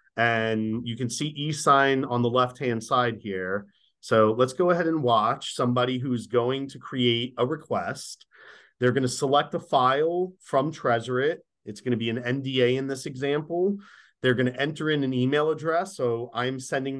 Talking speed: 170 wpm